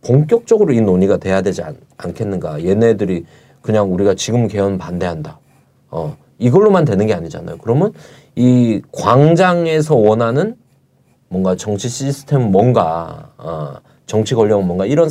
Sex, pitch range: male, 100-140 Hz